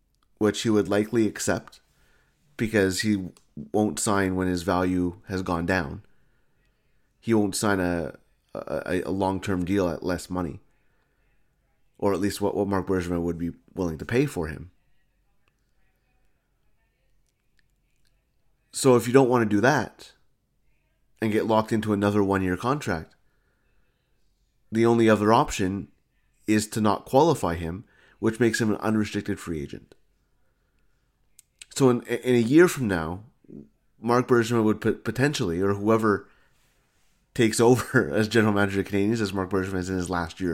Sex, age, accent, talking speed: male, 30-49, American, 150 wpm